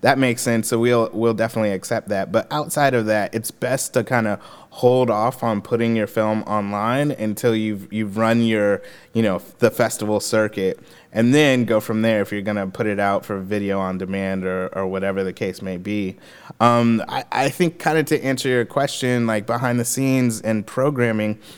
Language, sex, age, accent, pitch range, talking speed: English, male, 30-49, American, 105-125 Hz, 195 wpm